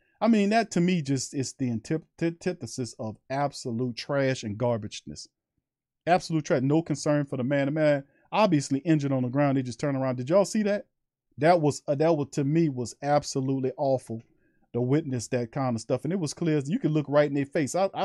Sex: male